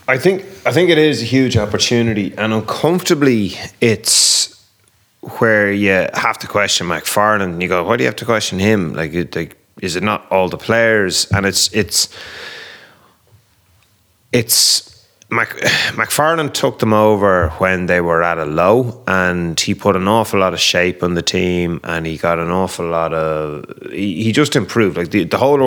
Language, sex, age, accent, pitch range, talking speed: English, male, 30-49, Irish, 90-115 Hz, 180 wpm